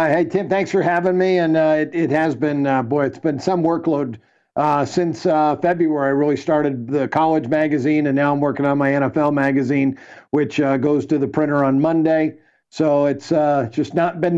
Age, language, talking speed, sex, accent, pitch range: 50-69, English, 210 wpm, male, American, 150-175 Hz